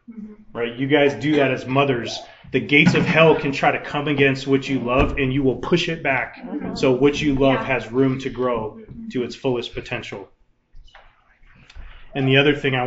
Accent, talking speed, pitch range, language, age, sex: American, 195 wpm, 120-140 Hz, English, 30-49, male